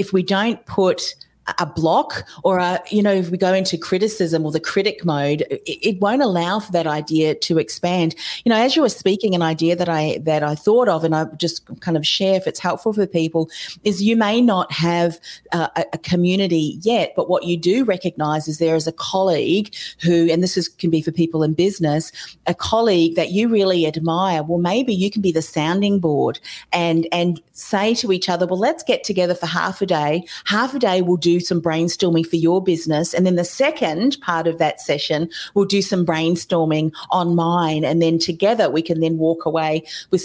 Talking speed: 215 wpm